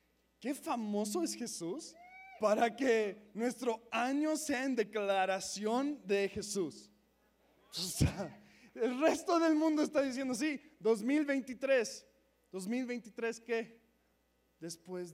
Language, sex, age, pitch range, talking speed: Spanish, male, 20-39, 185-240 Hz, 95 wpm